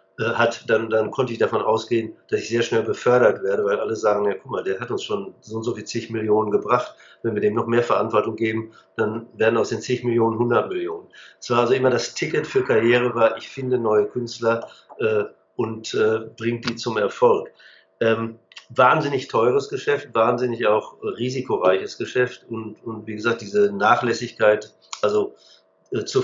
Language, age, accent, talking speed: German, 50-69, German, 185 wpm